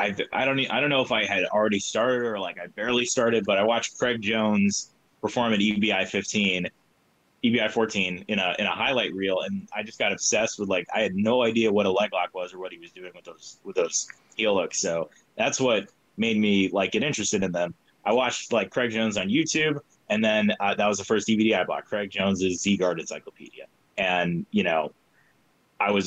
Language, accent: English, American